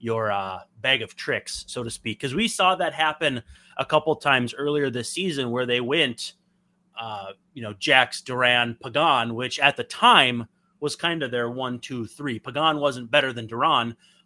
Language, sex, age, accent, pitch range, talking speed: English, male, 30-49, American, 120-165 Hz, 185 wpm